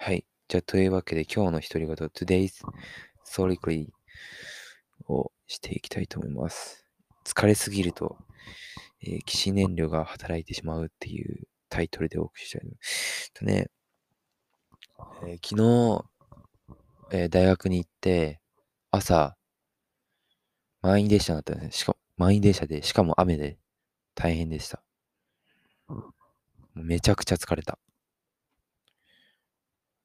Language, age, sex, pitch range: English, 20-39, male, 80-95 Hz